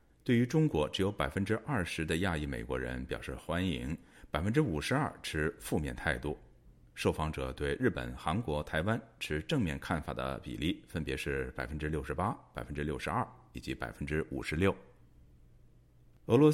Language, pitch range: Chinese, 70-100 Hz